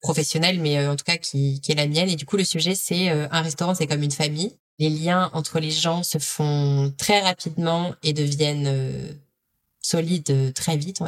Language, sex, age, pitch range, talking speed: French, female, 20-39, 155-185 Hz, 210 wpm